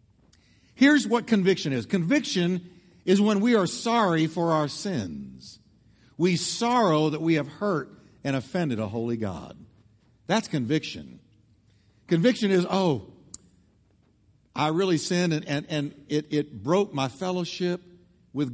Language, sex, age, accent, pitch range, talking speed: English, male, 60-79, American, 120-195 Hz, 135 wpm